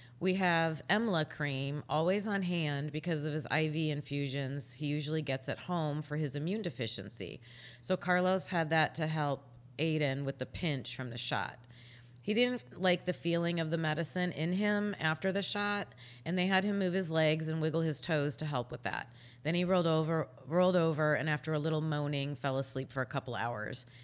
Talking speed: 195 wpm